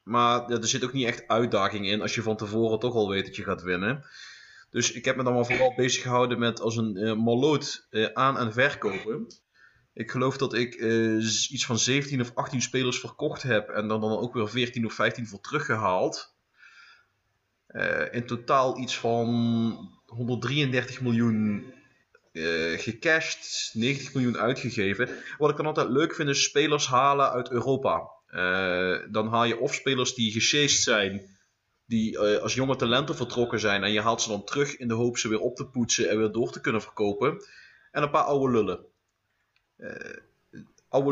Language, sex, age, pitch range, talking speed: Dutch, male, 20-39, 110-130 Hz, 185 wpm